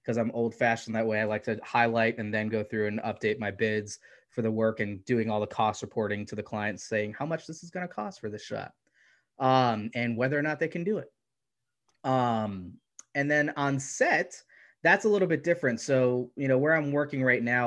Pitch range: 110-125 Hz